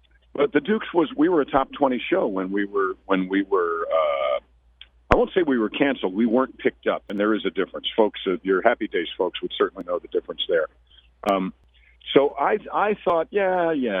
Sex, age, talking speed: male, 50-69, 215 wpm